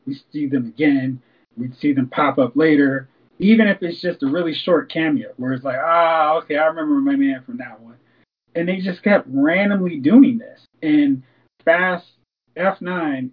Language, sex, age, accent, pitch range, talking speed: English, male, 20-39, American, 135-195 Hz, 185 wpm